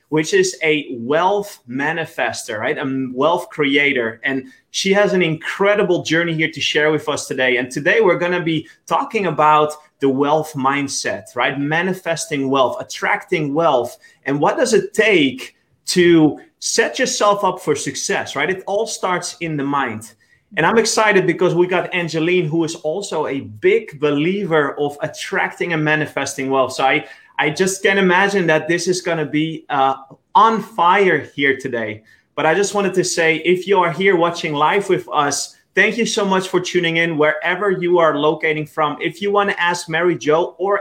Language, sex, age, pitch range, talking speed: English, male, 30-49, 145-185 Hz, 180 wpm